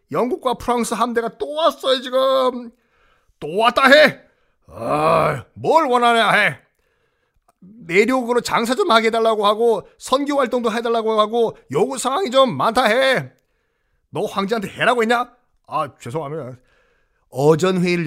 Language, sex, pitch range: Korean, male, 185-245 Hz